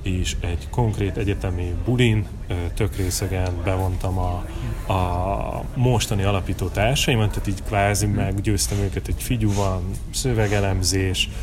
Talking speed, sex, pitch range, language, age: 110 wpm, male, 95-110 Hz, Hungarian, 30-49